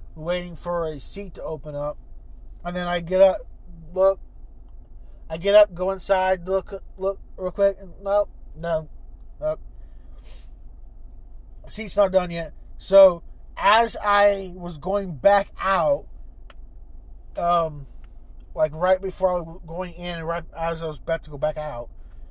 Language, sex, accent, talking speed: English, male, American, 155 wpm